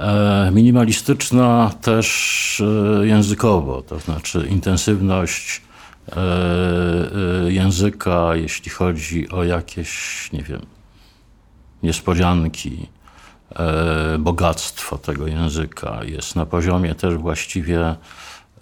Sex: male